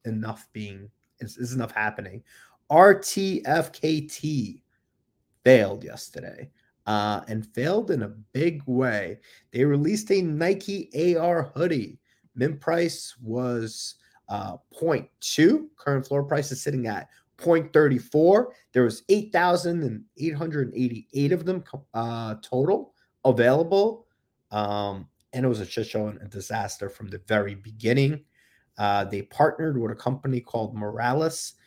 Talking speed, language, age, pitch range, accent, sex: 120 wpm, English, 30-49, 110-145 Hz, American, male